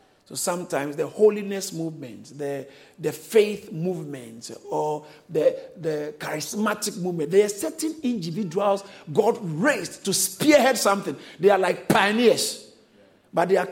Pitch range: 160-210 Hz